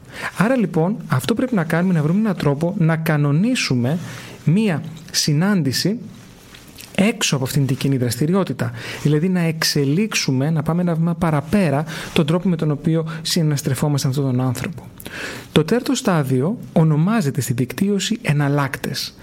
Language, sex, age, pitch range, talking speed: Greek, male, 30-49, 145-185 Hz, 135 wpm